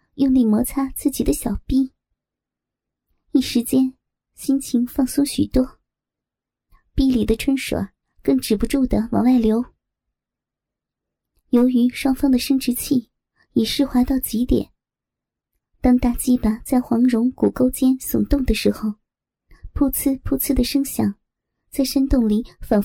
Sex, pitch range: male, 235-270 Hz